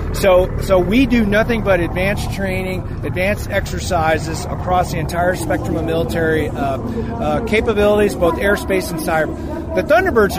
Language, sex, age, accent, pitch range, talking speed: English, male, 30-49, American, 160-205 Hz, 145 wpm